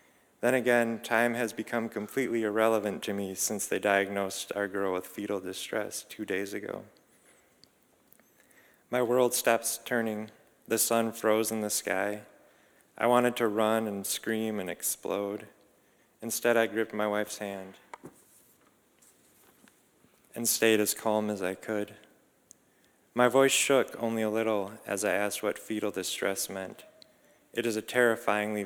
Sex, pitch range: male, 100-115 Hz